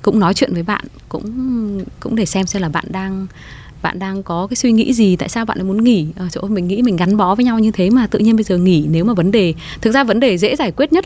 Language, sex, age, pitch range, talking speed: Vietnamese, female, 20-39, 170-220 Hz, 305 wpm